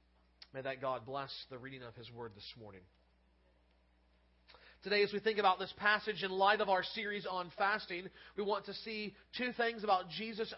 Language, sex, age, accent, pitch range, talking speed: English, male, 40-59, American, 165-215 Hz, 185 wpm